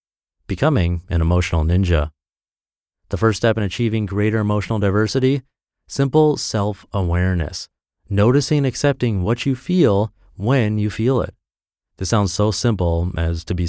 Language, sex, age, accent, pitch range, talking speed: English, male, 30-49, American, 90-125 Hz, 135 wpm